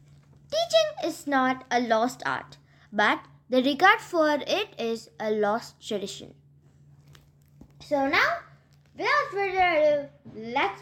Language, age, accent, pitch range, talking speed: English, 10-29, Indian, 235-365 Hz, 115 wpm